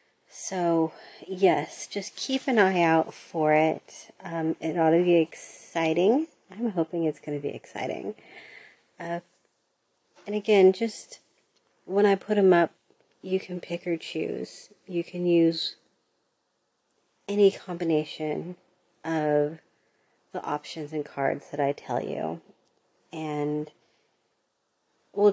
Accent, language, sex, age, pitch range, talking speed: American, English, female, 40-59, 150-175 Hz, 125 wpm